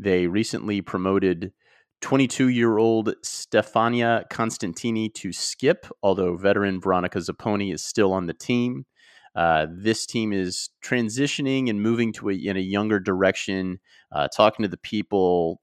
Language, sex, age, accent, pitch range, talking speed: English, male, 30-49, American, 85-110 Hz, 135 wpm